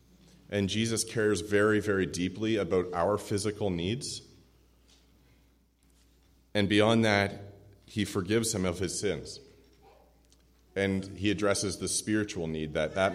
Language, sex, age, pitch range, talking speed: English, male, 30-49, 90-110 Hz, 125 wpm